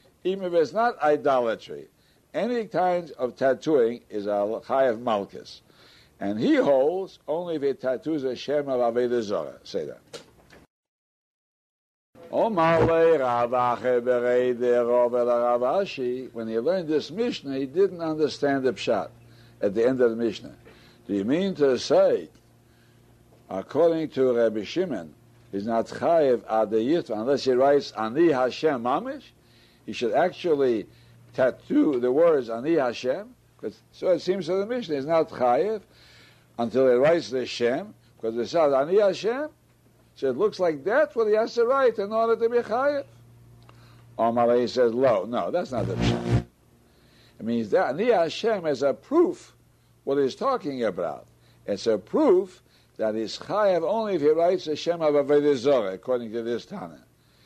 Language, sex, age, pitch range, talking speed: English, male, 60-79, 120-180 Hz, 150 wpm